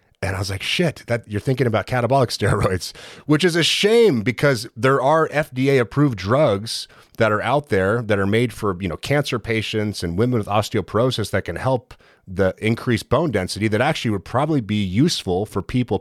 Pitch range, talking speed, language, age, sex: 90-120 Hz, 195 wpm, English, 30-49, male